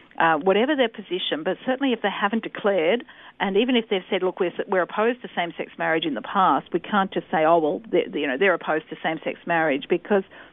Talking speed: 220 wpm